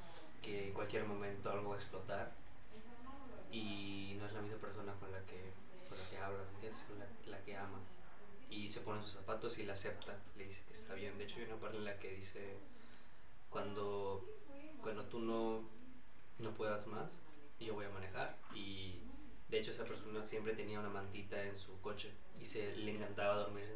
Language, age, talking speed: Spanish, 20-39, 195 wpm